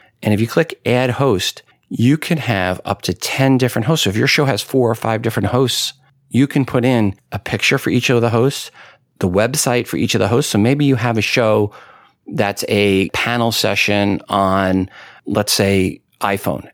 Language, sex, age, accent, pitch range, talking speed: English, male, 40-59, American, 95-120 Hz, 200 wpm